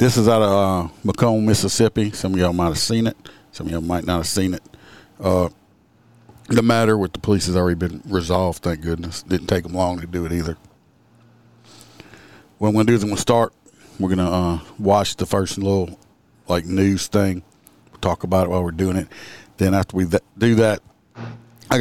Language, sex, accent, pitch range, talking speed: English, male, American, 90-105 Hz, 205 wpm